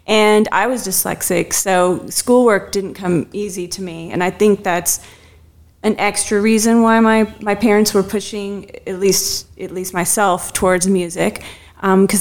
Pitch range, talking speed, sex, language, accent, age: 180-215 Hz, 155 wpm, female, English, American, 30-49